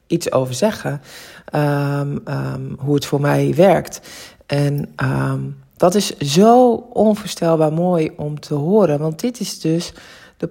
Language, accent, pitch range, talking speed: Dutch, Dutch, 145-190 Hz, 125 wpm